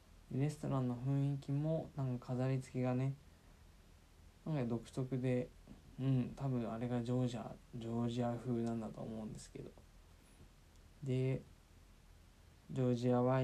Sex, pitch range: male, 85-130 Hz